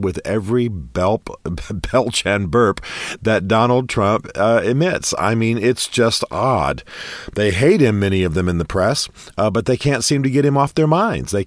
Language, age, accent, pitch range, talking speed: English, 50-69, American, 90-120 Hz, 190 wpm